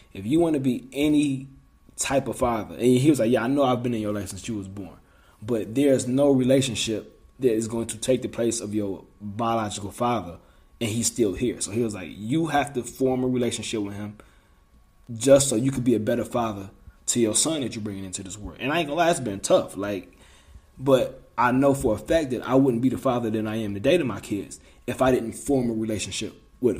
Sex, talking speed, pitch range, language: male, 245 wpm, 105-130 Hz, English